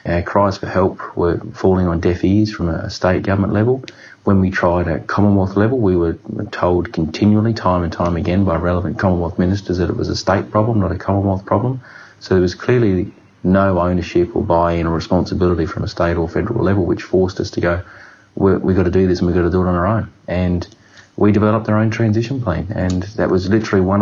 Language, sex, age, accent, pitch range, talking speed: English, male, 30-49, Australian, 90-105 Hz, 220 wpm